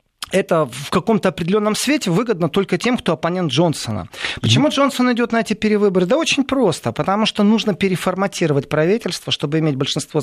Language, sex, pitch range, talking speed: Russian, male, 155-210 Hz, 165 wpm